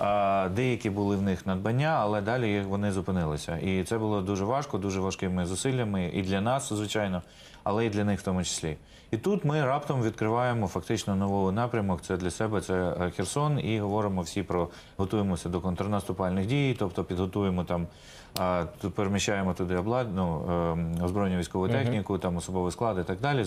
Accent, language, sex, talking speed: native, Ukrainian, male, 170 wpm